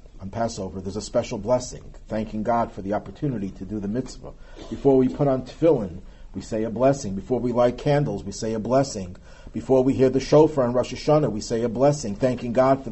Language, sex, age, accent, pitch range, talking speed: English, male, 50-69, American, 110-150 Hz, 220 wpm